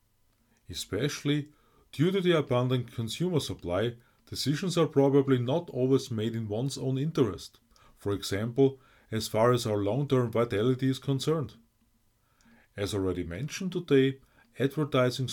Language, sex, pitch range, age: English, male, 110-145 Hz, 30-49